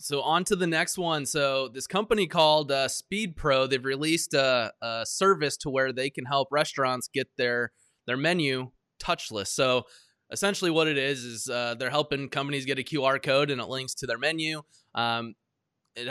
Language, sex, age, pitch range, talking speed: English, male, 20-39, 120-150 Hz, 195 wpm